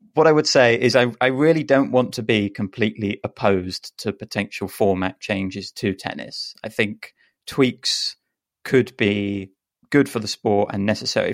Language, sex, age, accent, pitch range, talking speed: English, male, 30-49, British, 95-115 Hz, 165 wpm